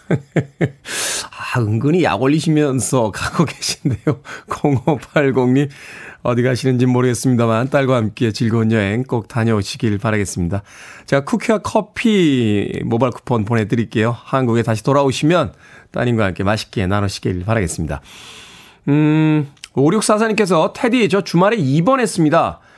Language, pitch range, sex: Korean, 115-155 Hz, male